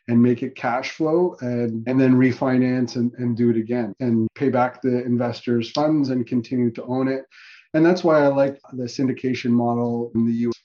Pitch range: 125-155 Hz